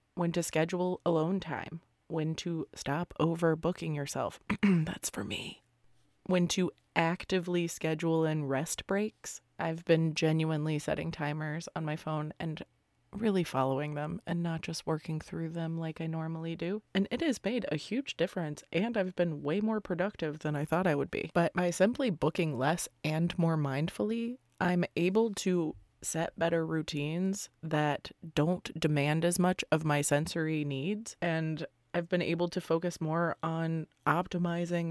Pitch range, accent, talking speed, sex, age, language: 155-180 Hz, American, 160 wpm, female, 20-39, English